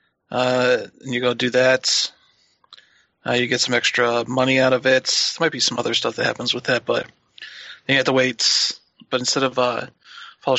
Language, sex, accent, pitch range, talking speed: English, male, American, 125-135 Hz, 200 wpm